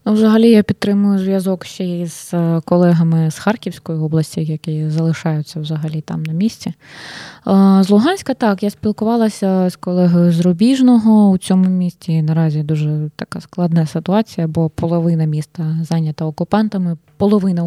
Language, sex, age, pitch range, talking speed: Ukrainian, female, 20-39, 165-200 Hz, 135 wpm